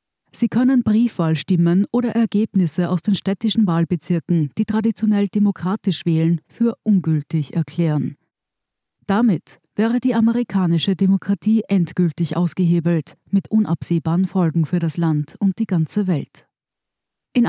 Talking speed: 115 wpm